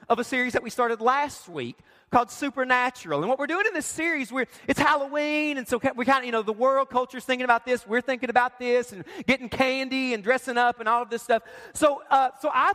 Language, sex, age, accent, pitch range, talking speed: English, male, 40-59, American, 220-275 Hz, 245 wpm